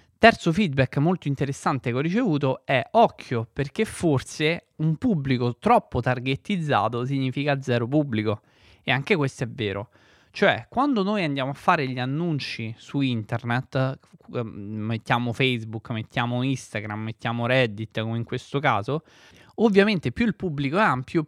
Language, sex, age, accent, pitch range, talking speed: Italian, male, 20-39, native, 120-160 Hz, 140 wpm